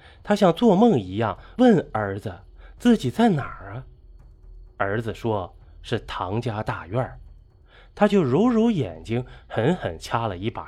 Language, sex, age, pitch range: Chinese, male, 20-39, 95-140 Hz